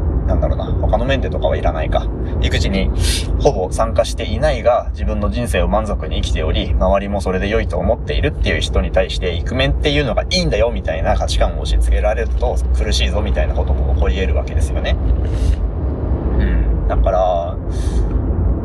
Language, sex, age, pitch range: Japanese, male, 20-39, 80-95 Hz